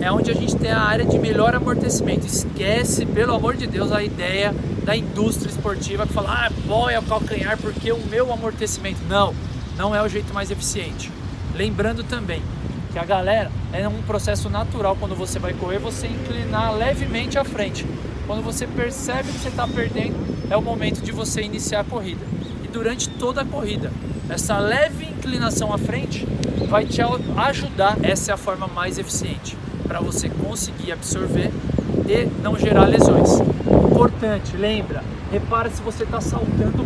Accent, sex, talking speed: Brazilian, male, 170 wpm